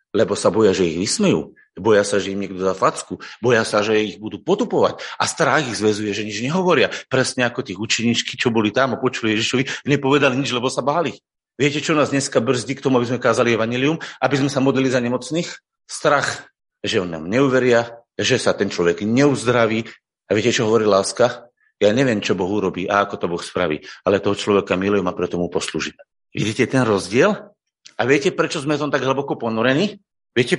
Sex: male